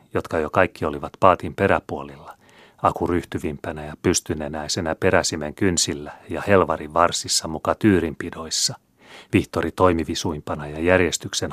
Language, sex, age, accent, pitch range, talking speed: Finnish, male, 30-49, native, 75-95 Hz, 110 wpm